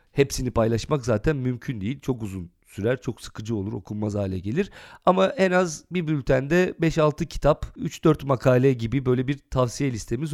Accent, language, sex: native, Turkish, male